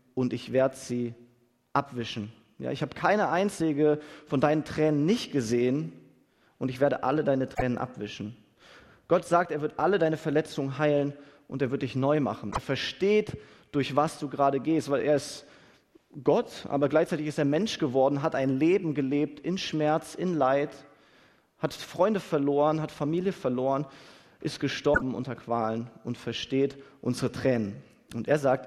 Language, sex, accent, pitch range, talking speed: German, male, German, 125-155 Hz, 165 wpm